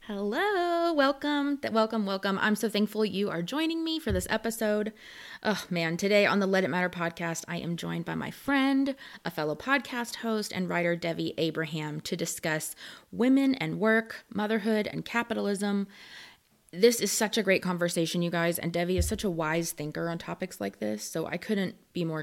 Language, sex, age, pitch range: English, female, 20-39, 165-220 Hz